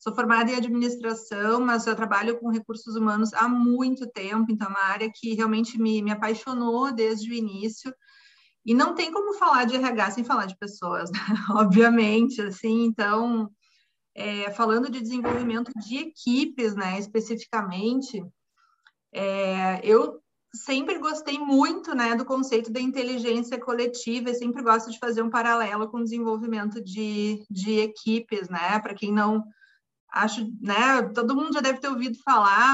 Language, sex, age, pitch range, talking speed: Portuguese, female, 30-49, 215-260 Hz, 155 wpm